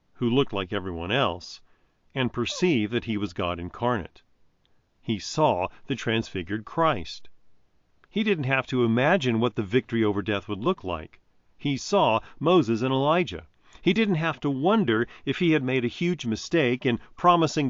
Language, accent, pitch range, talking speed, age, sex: English, American, 100-130 Hz, 165 wpm, 40-59, male